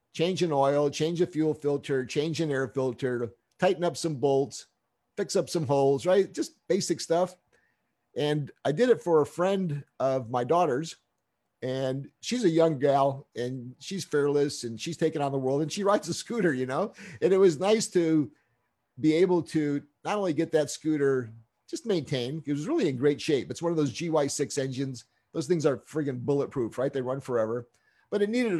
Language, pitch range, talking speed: English, 130-165 Hz, 195 wpm